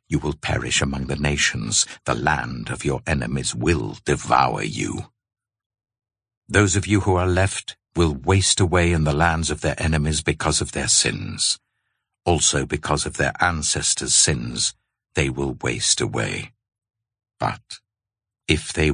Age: 60-79